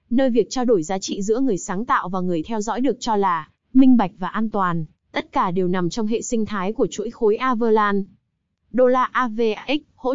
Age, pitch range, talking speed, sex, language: 20-39, 195-245 Hz, 225 wpm, female, Vietnamese